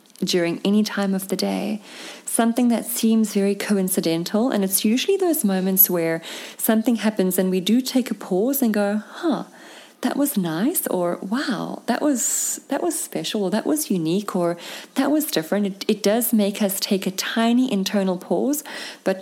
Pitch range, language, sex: 180-220 Hz, English, female